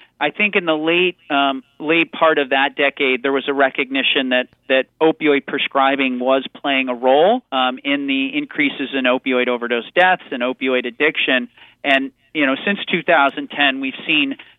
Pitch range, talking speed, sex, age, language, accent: 130-165 Hz, 175 wpm, male, 40-59, English, American